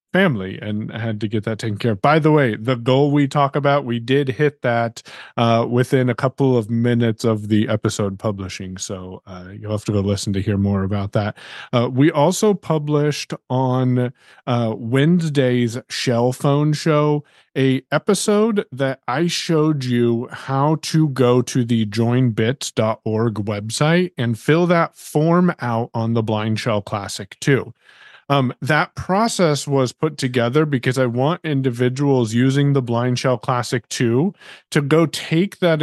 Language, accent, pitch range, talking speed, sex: English, American, 115-145 Hz, 160 wpm, male